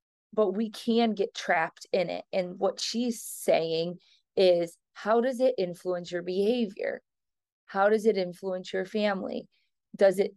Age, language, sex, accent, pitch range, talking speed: 30-49, English, female, American, 175-215 Hz, 150 wpm